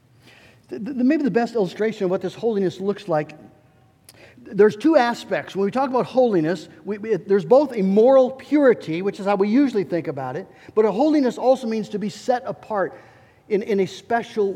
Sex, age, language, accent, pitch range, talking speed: male, 50-69, English, American, 170-220 Hz, 180 wpm